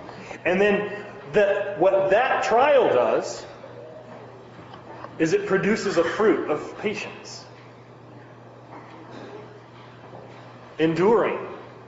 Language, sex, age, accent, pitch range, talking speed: English, male, 30-49, American, 160-265 Hz, 70 wpm